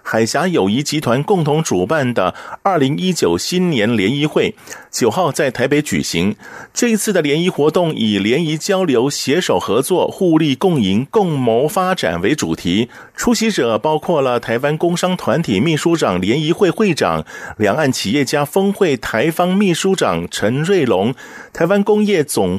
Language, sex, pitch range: Chinese, male, 130-185 Hz